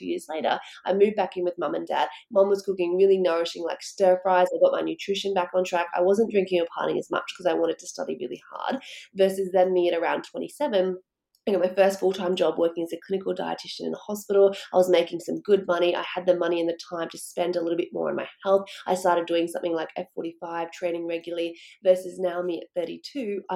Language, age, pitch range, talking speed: English, 20-39, 170-195 Hz, 235 wpm